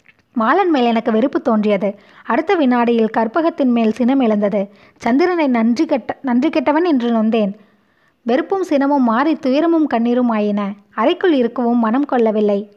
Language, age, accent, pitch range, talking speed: Tamil, 20-39, native, 220-280 Hz, 130 wpm